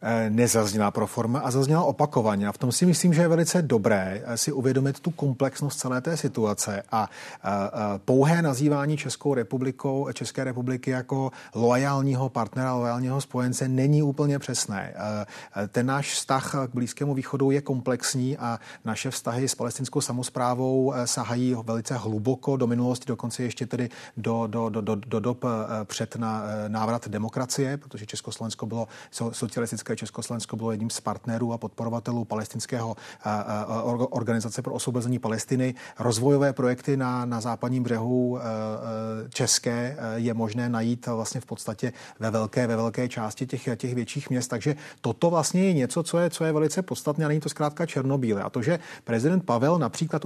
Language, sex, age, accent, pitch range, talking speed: Czech, male, 40-59, native, 115-140 Hz, 155 wpm